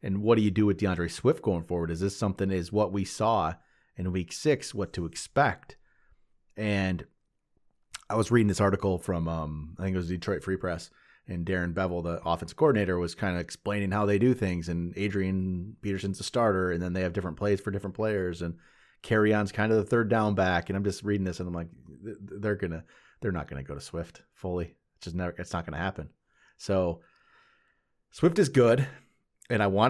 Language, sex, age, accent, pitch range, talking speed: English, male, 30-49, American, 85-105 Hz, 215 wpm